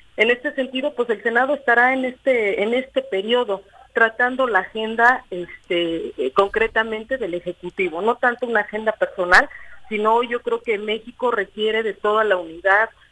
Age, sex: 40-59, female